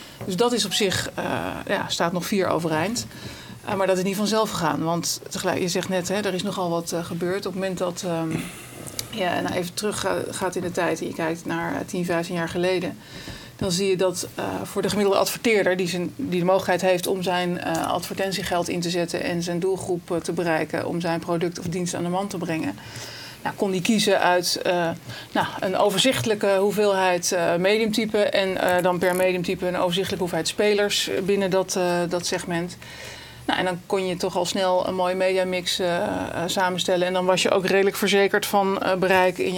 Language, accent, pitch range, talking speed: Dutch, Dutch, 175-195 Hz, 205 wpm